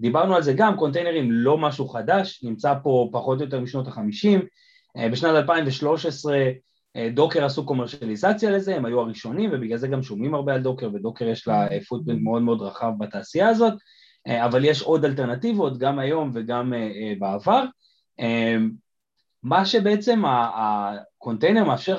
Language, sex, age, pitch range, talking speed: Hebrew, male, 30-49, 115-165 Hz, 140 wpm